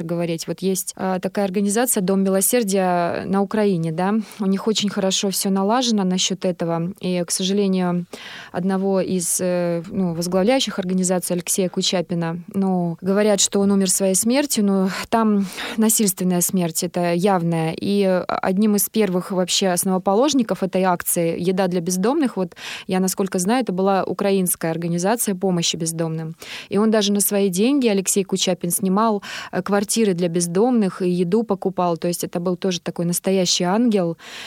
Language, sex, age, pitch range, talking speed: Russian, female, 20-39, 180-200 Hz, 150 wpm